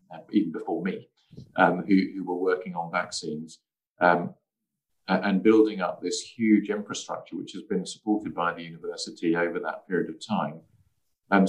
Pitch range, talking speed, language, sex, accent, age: 85-110 Hz, 155 wpm, English, male, British, 40-59